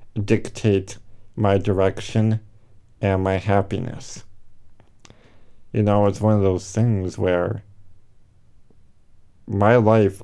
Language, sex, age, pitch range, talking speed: English, male, 50-69, 100-115 Hz, 95 wpm